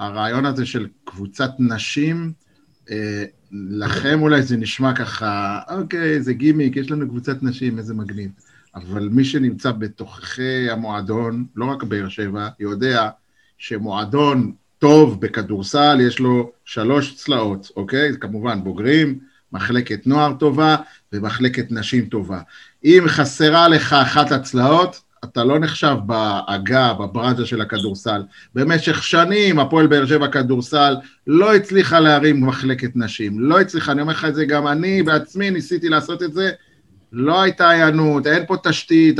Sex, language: male, Hebrew